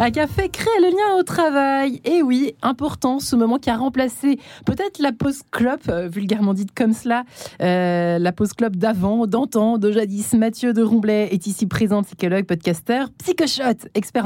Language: French